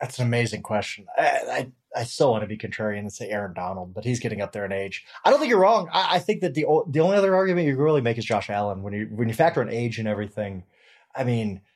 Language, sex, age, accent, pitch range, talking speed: English, male, 30-49, American, 105-145 Hz, 280 wpm